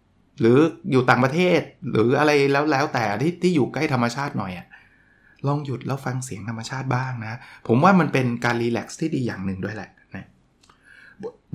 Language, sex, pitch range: Thai, male, 115-155 Hz